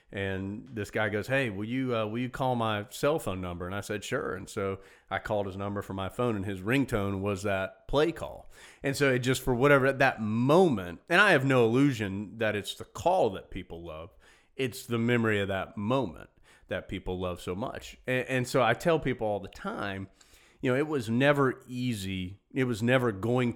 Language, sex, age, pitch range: English, male, 40-59, 100-125 Hz